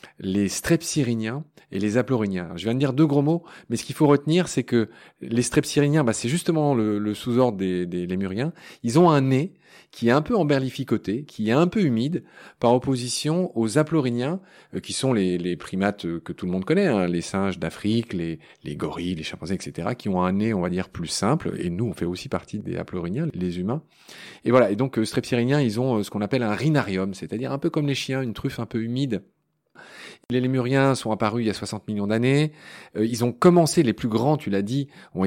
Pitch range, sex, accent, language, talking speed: 95-140 Hz, male, French, French, 225 wpm